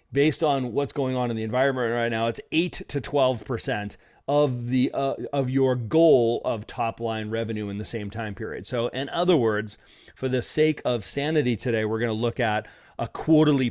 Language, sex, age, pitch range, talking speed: English, male, 40-59, 115-140 Hz, 195 wpm